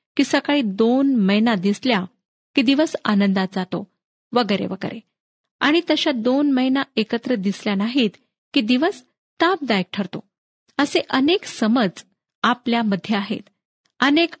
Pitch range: 205-275 Hz